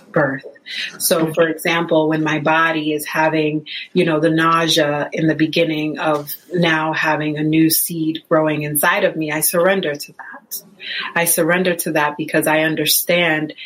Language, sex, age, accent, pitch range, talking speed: English, female, 30-49, American, 155-175 Hz, 165 wpm